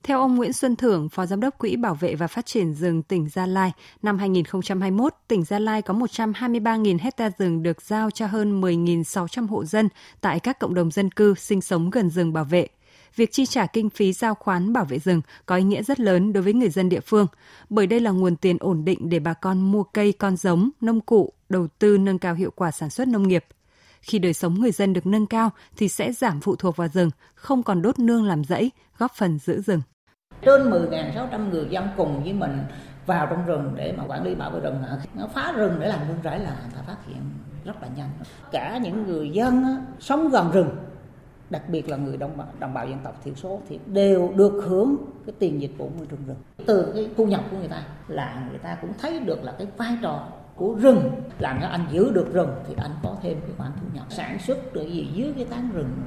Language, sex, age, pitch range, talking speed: Vietnamese, female, 20-39, 165-220 Hz, 235 wpm